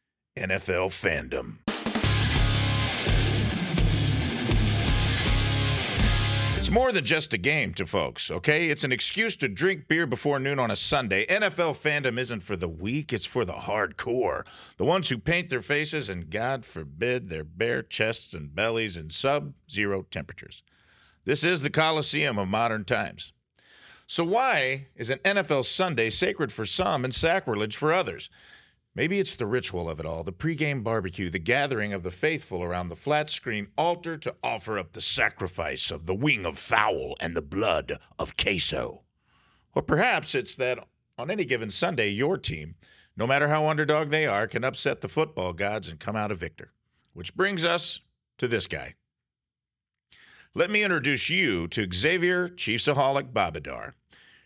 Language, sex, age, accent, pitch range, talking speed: English, male, 50-69, American, 105-150 Hz, 160 wpm